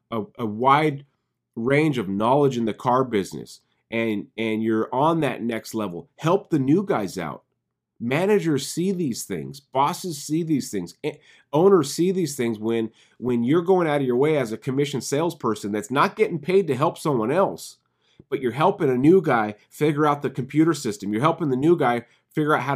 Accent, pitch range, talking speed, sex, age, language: American, 115-155 Hz, 195 wpm, male, 30-49, English